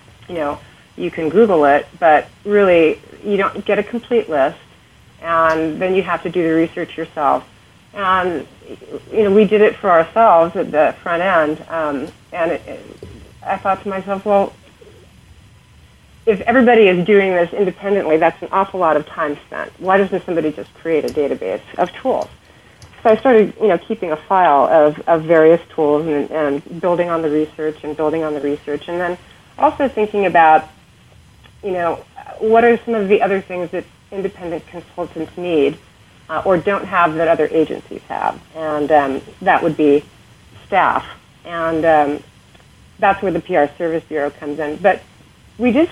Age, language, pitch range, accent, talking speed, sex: 40-59, English, 155-195 Hz, American, 175 wpm, female